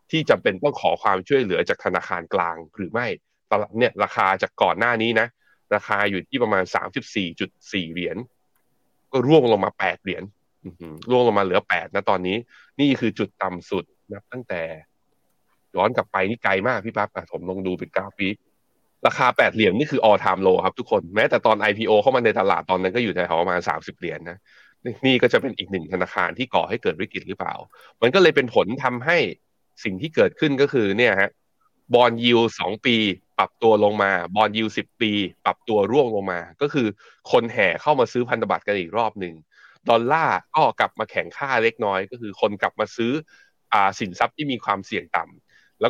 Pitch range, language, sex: 95-115 Hz, Thai, male